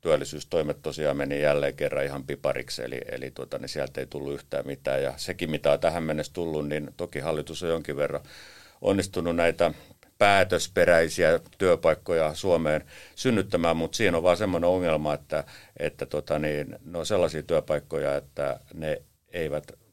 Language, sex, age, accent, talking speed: Finnish, male, 50-69, native, 160 wpm